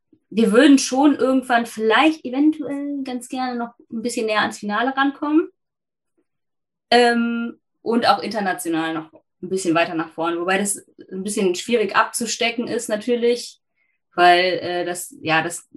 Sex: female